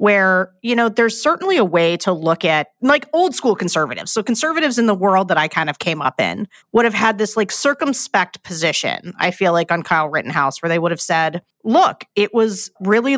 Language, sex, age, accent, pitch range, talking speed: English, female, 40-59, American, 165-230 Hz, 215 wpm